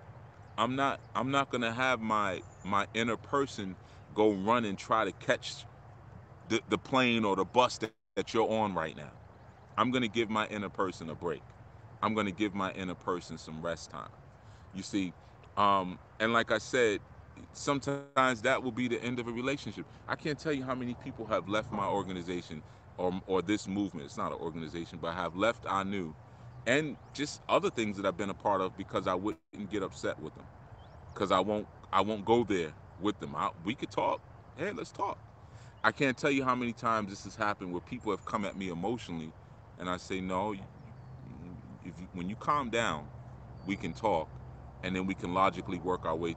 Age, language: 30-49, English